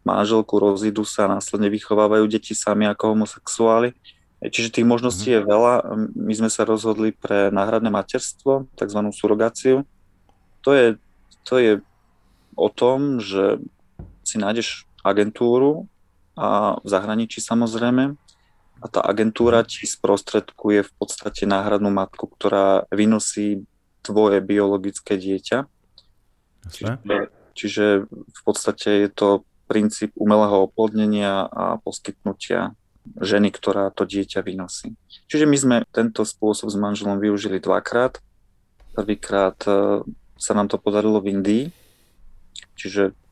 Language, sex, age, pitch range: Slovak, male, 20-39, 100-110 Hz